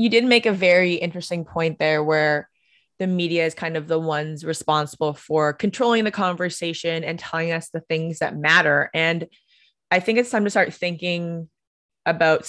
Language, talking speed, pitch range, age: English, 180 wpm, 160-205 Hz, 20-39